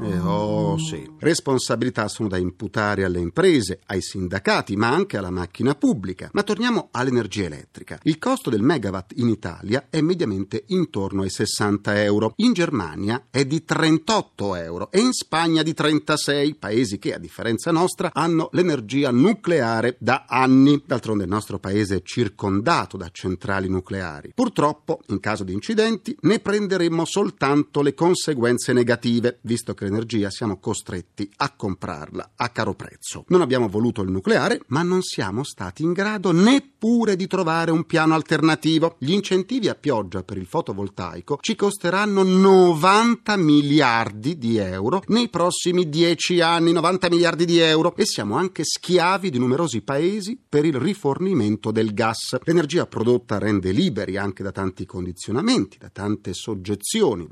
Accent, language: native, Italian